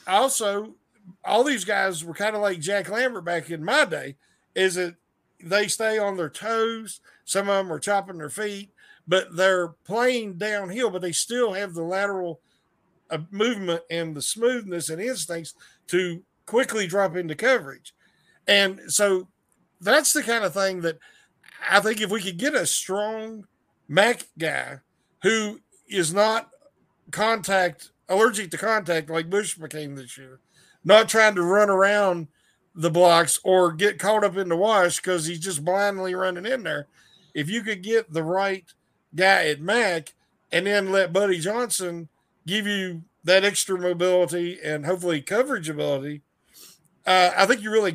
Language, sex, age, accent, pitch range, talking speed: English, male, 50-69, American, 170-215 Hz, 160 wpm